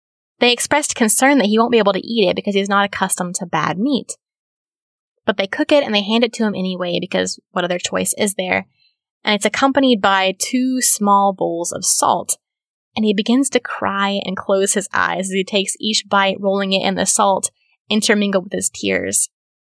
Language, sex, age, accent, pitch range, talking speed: English, female, 10-29, American, 190-225 Hz, 205 wpm